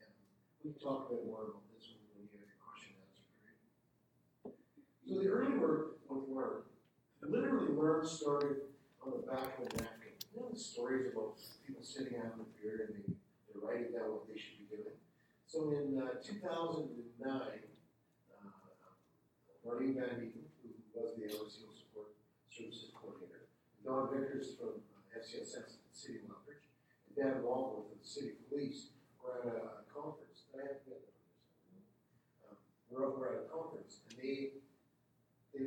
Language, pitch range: English, 110-145 Hz